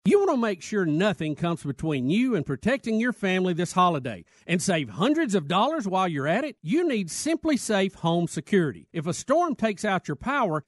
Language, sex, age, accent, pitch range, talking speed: English, male, 50-69, American, 165-235 Hz, 210 wpm